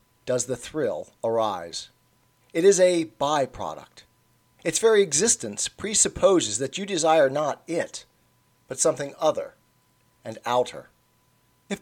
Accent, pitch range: American, 130-180 Hz